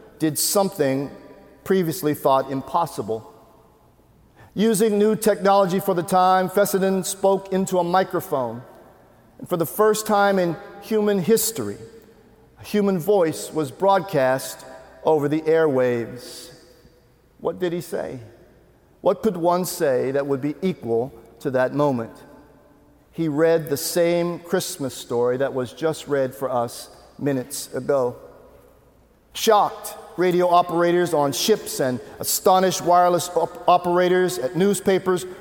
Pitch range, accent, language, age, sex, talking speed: 160-210 Hz, American, English, 50-69, male, 120 wpm